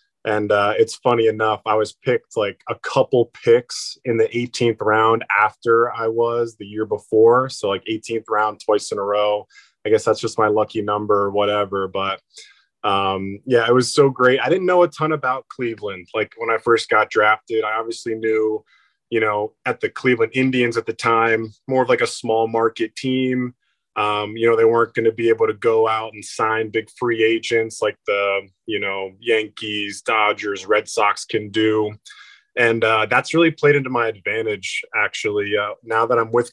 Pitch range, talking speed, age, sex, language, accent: 110-130 Hz, 195 wpm, 20-39, male, English, American